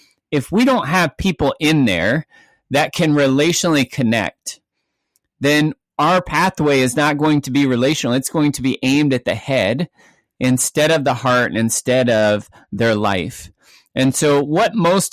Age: 30-49